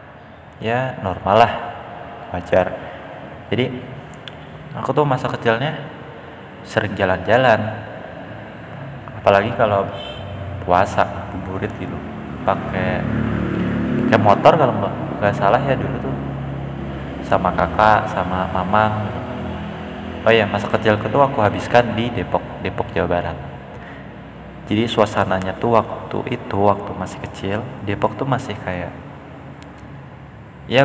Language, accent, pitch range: Indonesian, native, 100-120 Hz